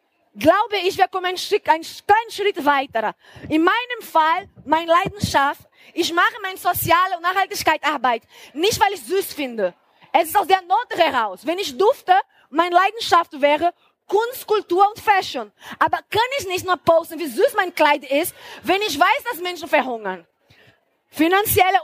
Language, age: German, 20-39